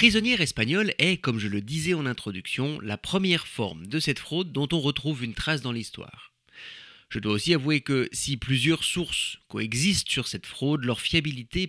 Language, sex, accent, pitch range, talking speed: French, male, French, 115-160 Hz, 185 wpm